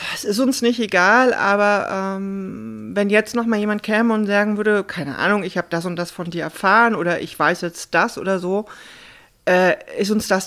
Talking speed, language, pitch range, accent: 205 wpm, German, 180-220 Hz, German